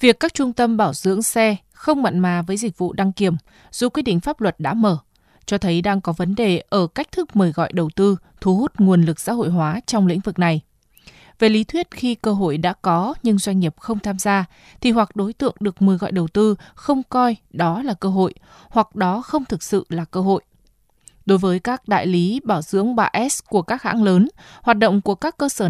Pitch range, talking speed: 180-225 Hz, 235 wpm